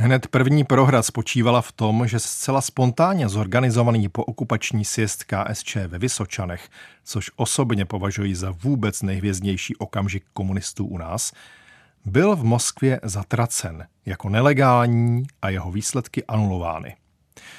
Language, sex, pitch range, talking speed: Czech, male, 105-130 Hz, 125 wpm